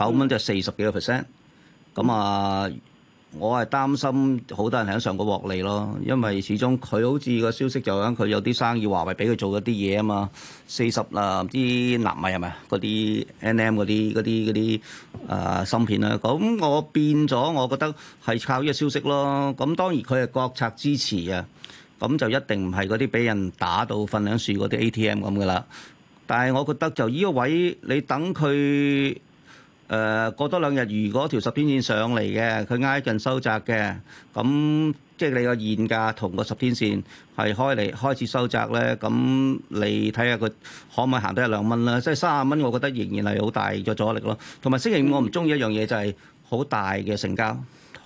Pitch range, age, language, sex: 105-135 Hz, 40-59, Chinese, male